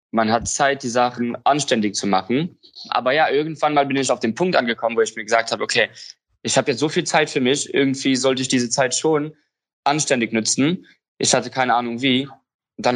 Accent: German